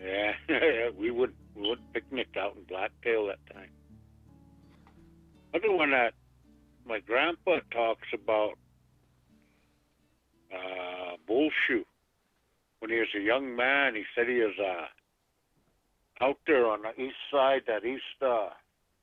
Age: 60-79